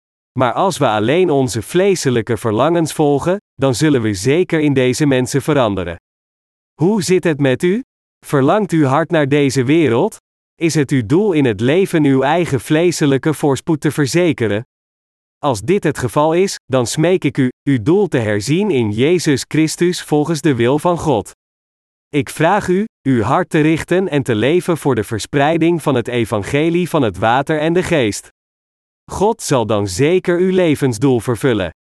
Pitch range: 125-165 Hz